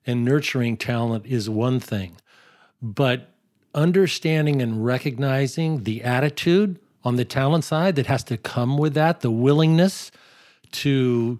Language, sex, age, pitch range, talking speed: English, male, 50-69, 120-145 Hz, 130 wpm